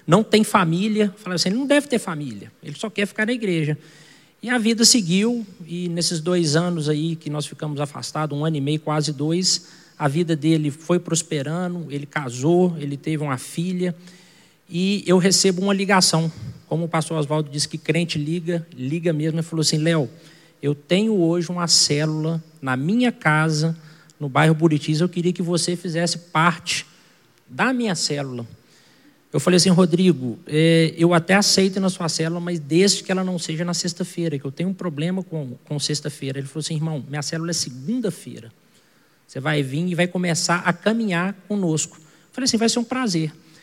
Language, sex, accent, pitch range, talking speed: Portuguese, male, Brazilian, 155-195 Hz, 185 wpm